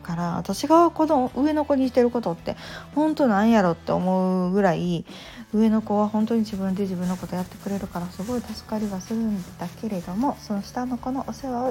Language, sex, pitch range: Japanese, female, 185-235 Hz